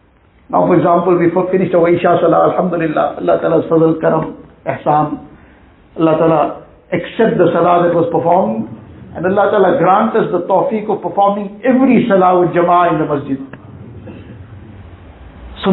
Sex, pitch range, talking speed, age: male, 170-215 Hz, 150 wpm, 60-79